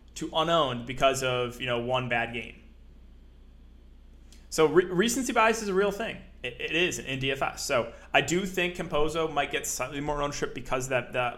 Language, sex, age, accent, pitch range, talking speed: English, male, 20-39, American, 120-150 Hz, 190 wpm